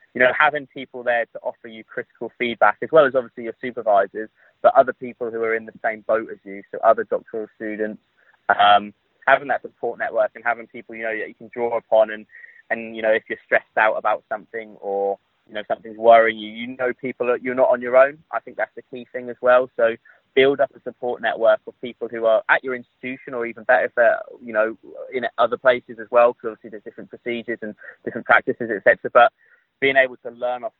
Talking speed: 235 wpm